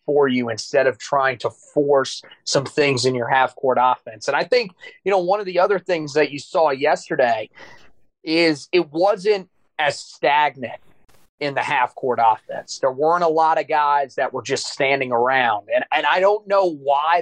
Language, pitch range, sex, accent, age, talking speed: English, 145-185 Hz, male, American, 30-49, 180 wpm